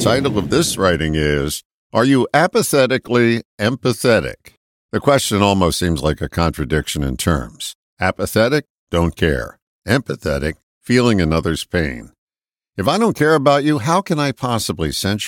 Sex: male